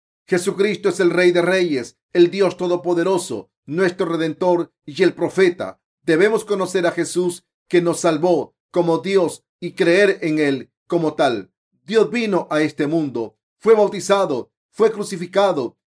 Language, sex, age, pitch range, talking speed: Spanish, male, 40-59, 160-195 Hz, 145 wpm